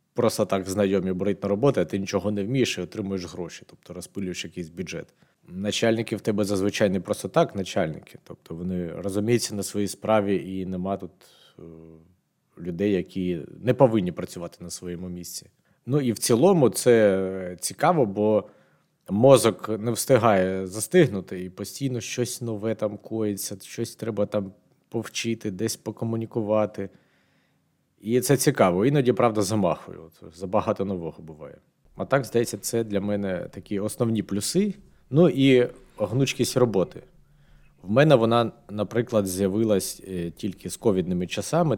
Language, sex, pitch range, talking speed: Ukrainian, male, 95-120 Hz, 140 wpm